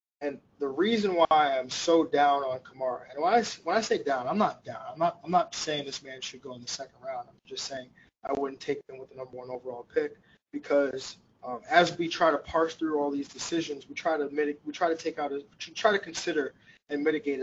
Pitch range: 140-180 Hz